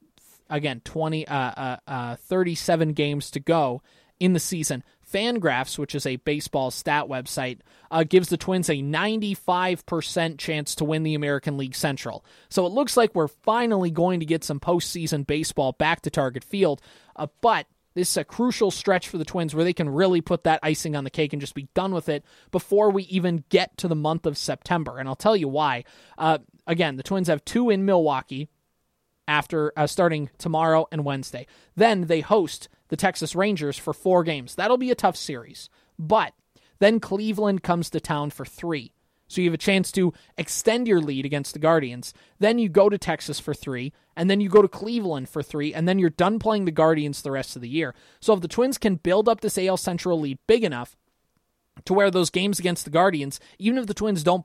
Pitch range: 145-190 Hz